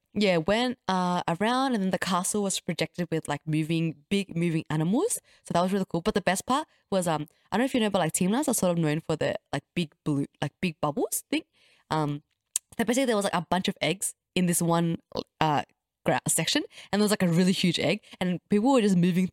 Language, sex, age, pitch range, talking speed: English, female, 20-39, 160-205 Hz, 240 wpm